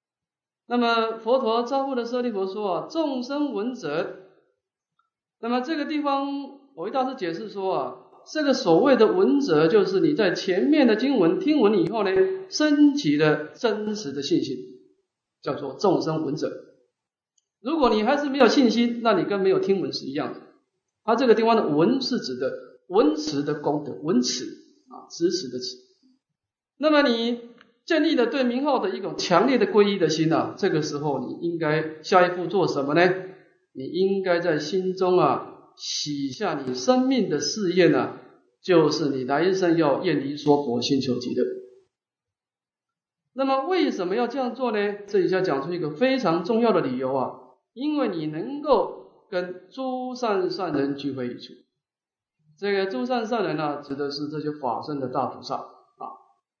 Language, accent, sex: English, Chinese, male